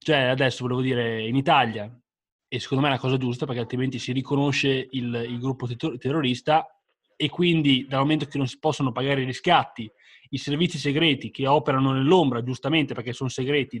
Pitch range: 130-155 Hz